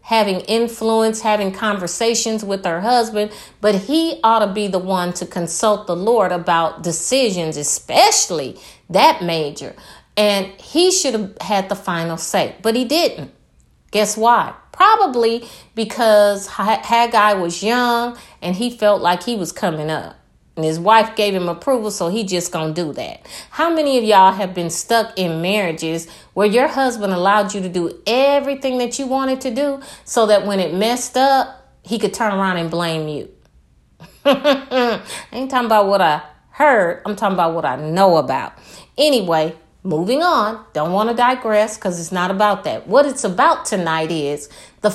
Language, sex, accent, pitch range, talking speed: English, female, American, 175-235 Hz, 170 wpm